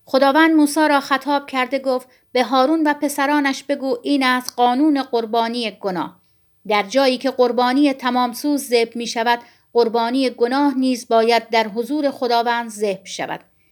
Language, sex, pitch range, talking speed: Persian, female, 230-270 Hz, 150 wpm